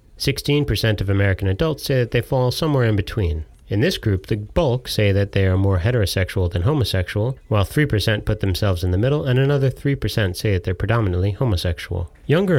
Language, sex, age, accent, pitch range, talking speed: English, male, 30-49, American, 95-125 Hz, 185 wpm